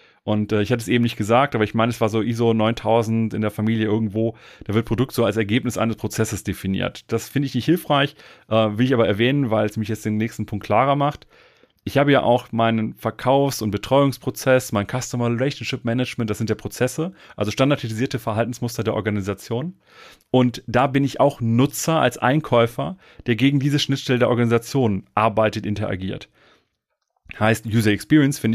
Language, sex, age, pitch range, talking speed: German, male, 30-49, 110-135 Hz, 185 wpm